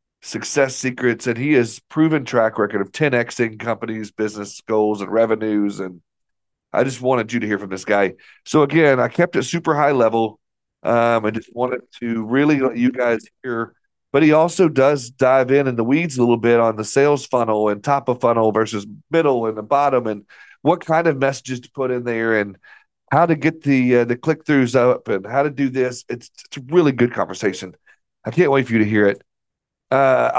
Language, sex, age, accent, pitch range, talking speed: English, male, 40-59, American, 110-135 Hz, 210 wpm